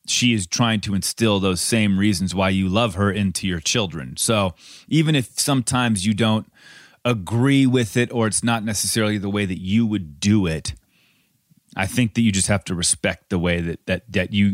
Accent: American